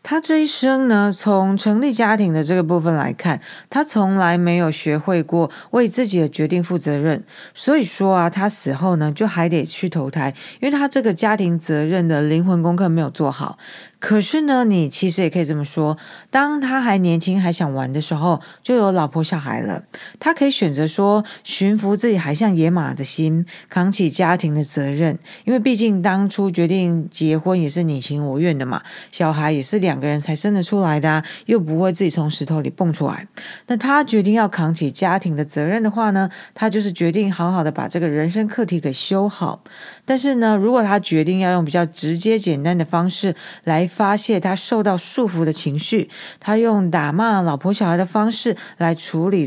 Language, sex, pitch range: Chinese, female, 160-215 Hz